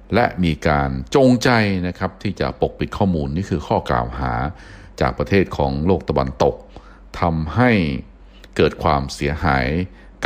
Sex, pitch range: male, 70-90 Hz